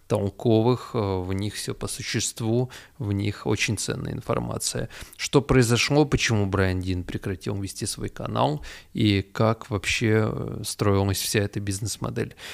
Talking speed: 130 wpm